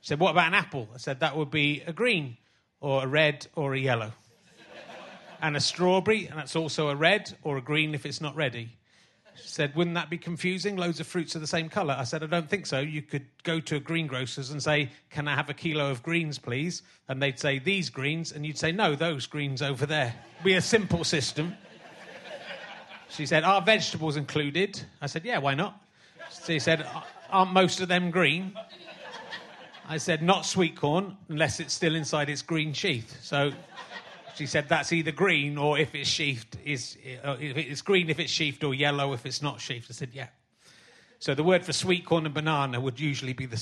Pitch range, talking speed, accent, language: 140-170 Hz, 210 wpm, British, English